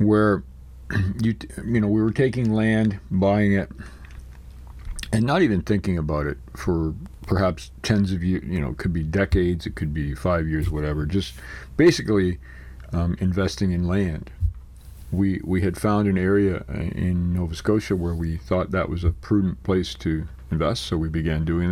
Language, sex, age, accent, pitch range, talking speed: English, male, 50-69, American, 80-100 Hz, 170 wpm